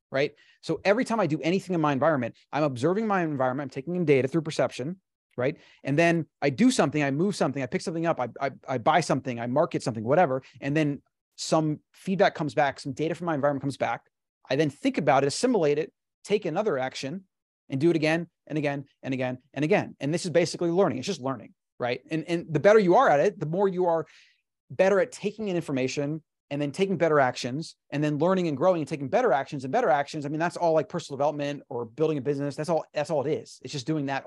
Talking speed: 240 wpm